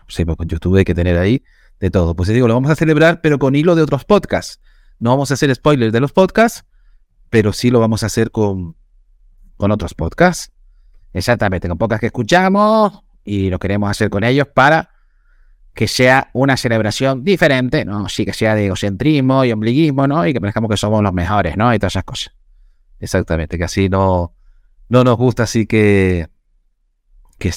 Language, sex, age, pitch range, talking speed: English, male, 30-49, 95-140 Hz, 190 wpm